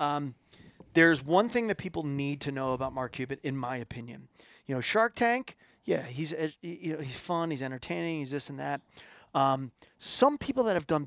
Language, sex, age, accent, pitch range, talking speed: English, male, 30-49, American, 135-170 Hz, 200 wpm